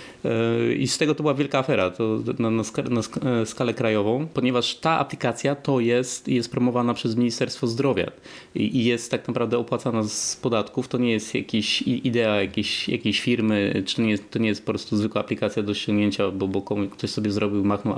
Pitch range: 110-135 Hz